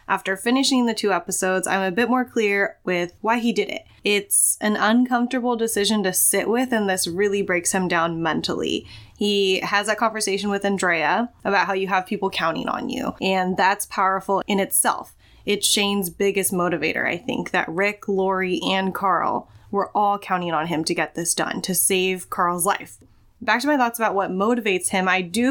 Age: 10-29